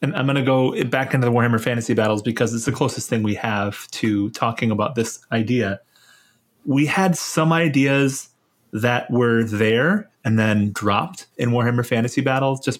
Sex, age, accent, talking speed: male, 30-49, American, 180 wpm